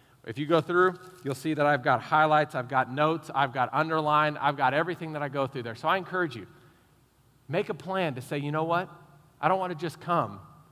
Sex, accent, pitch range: male, American, 130-170 Hz